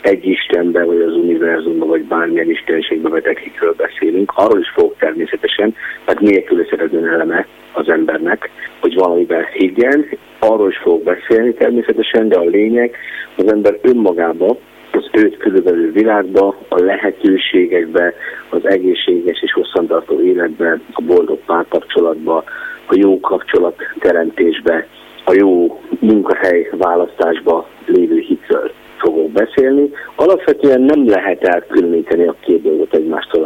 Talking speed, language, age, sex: 120 wpm, Hungarian, 50-69, male